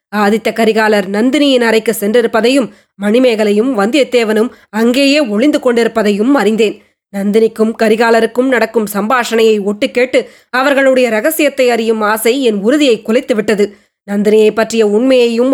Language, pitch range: Tamil, 215-250 Hz